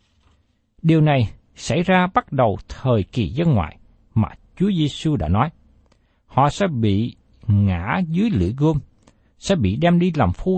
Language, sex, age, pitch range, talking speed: Vietnamese, male, 60-79, 105-170 Hz, 160 wpm